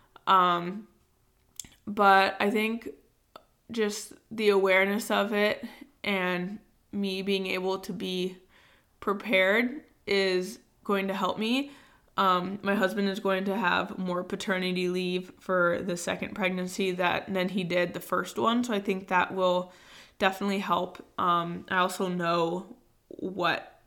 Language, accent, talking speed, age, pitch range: English, American, 135 wpm, 20-39, 180-205 Hz